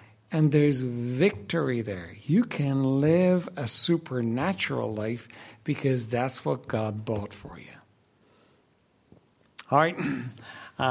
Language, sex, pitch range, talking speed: English, male, 110-150 Hz, 110 wpm